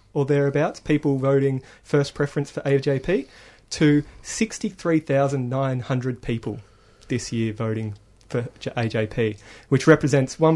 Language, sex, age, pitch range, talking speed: English, male, 30-49, 120-150 Hz, 100 wpm